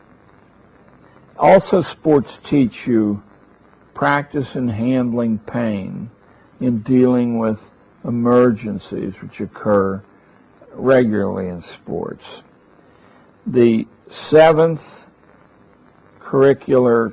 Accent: American